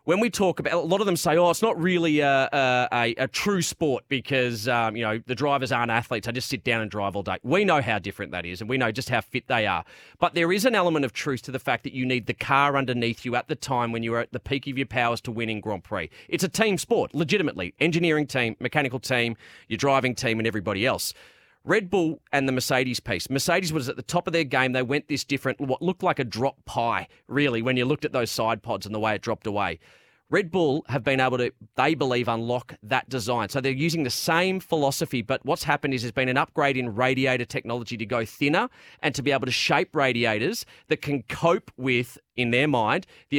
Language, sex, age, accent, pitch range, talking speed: English, male, 30-49, Australian, 120-150 Hz, 250 wpm